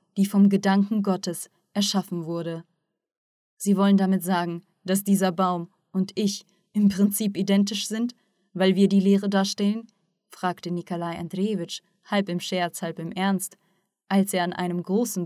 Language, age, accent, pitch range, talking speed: German, 20-39, German, 180-200 Hz, 150 wpm